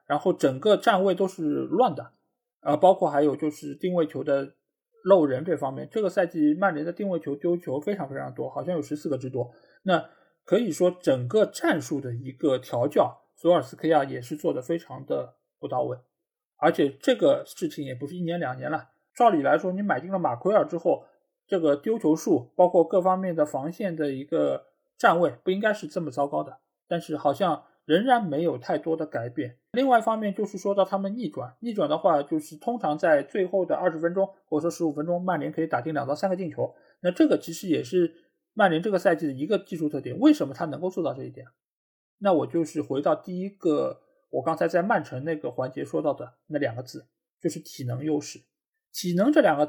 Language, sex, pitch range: Chinese, male, 150-195 Hz